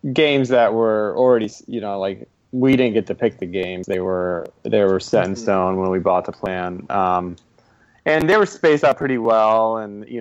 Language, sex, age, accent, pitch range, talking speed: English, male, 30-49, American, 95-125 Hz, 210 wpm